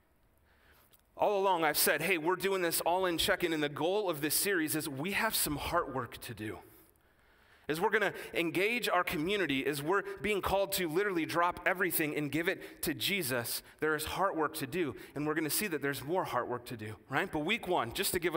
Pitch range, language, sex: 135-185 Hz, English, male